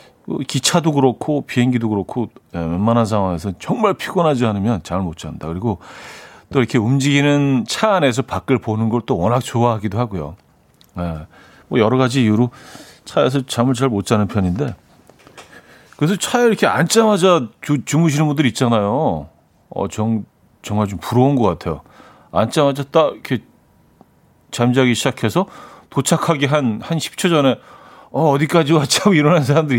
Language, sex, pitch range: Korean, male, 110-150 Hz